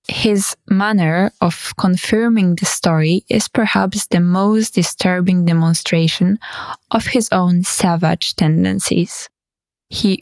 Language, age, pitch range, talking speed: Polish, 20-39, 175-210 Hz, 105 wpm